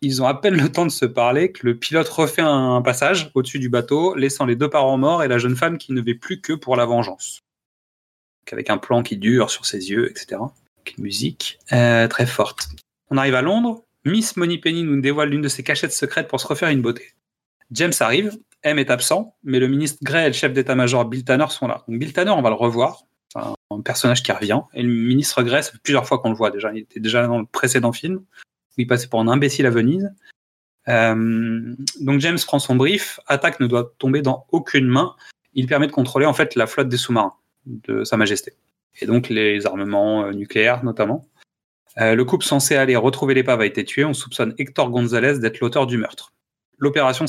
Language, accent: French, French